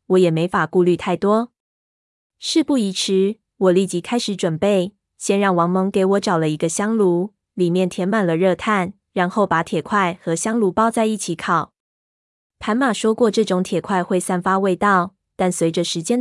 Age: 20-39